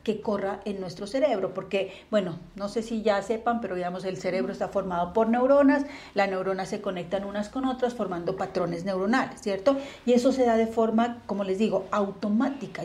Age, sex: 40-59, female